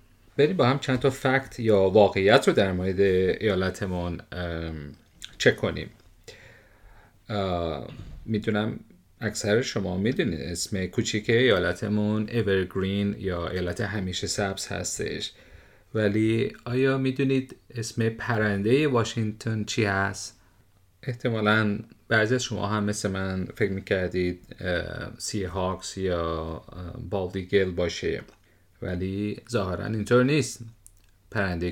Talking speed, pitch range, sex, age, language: 100 wpm, 95-120 Hz, male, 40-59, Persian